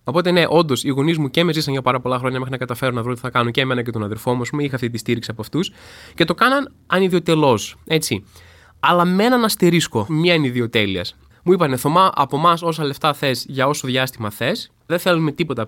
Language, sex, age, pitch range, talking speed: Greek, male, 20-39, 125-175 Hz, 225 wpm